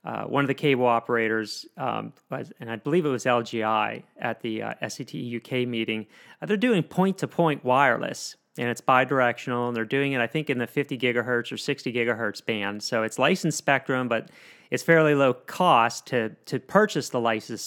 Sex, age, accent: male, 40-59, American